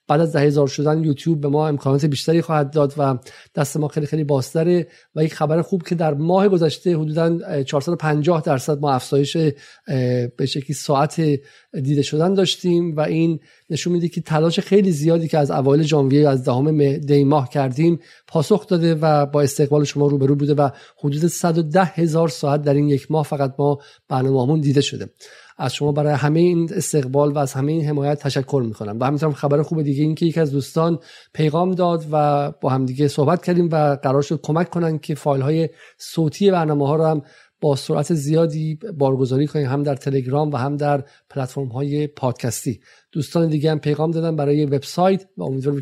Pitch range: 140-165 Hz